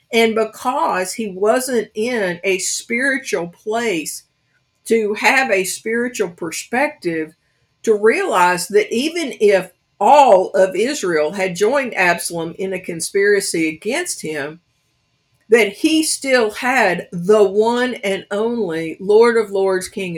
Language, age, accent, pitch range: English, 50-69, American, 160-225 Hz